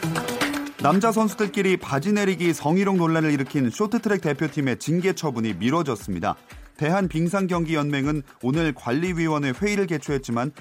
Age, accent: 30-49, native